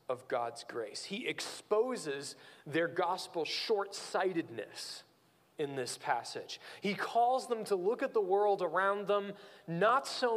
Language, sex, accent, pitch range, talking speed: English, male, American, 170-245 Hz, 135 wpm